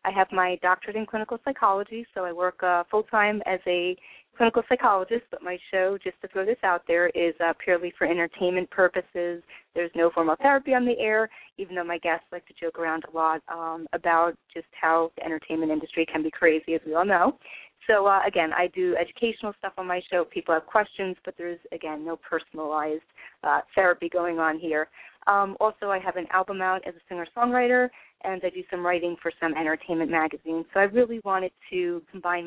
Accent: American